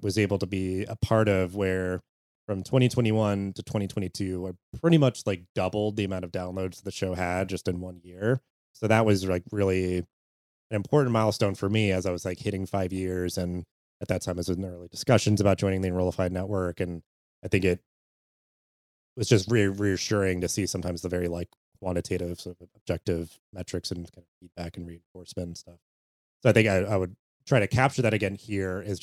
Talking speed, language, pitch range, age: 205 wpm, English, 90-105 Hz, 30-49